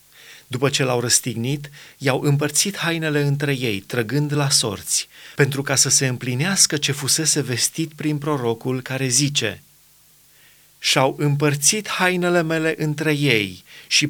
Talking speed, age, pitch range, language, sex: 130 wpm, 30-49, 130-165 Hz, Romanian, male